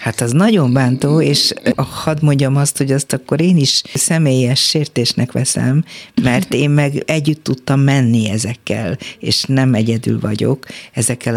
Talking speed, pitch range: 150 wpm, 110-135 Hz